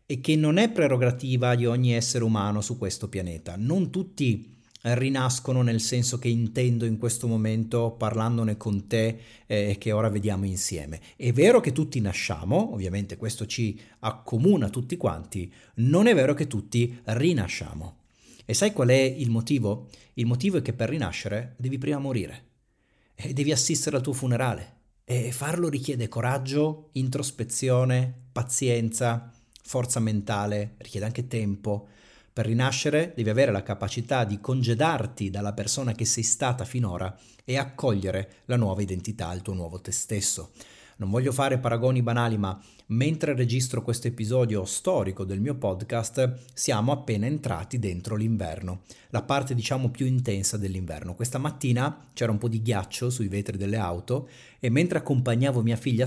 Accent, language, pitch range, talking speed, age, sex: native, Italian, 105-130 Hz, 155 wpm, 40-59, male